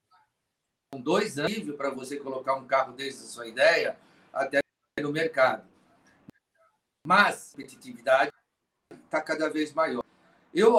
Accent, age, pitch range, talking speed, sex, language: Brazilian, 50-69, 145-210 Hz, 130 wpm, male, Portuguese